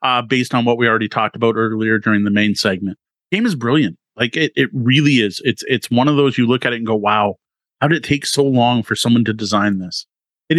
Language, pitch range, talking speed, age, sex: English, 120-155 Hz, 255 wpm, 30-49, male